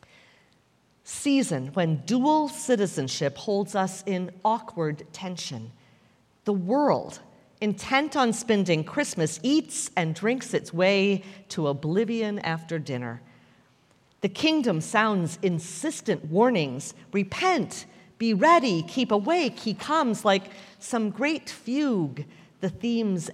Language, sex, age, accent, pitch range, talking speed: English, female, 50-69, American, 160-225 Hz, 110 wpm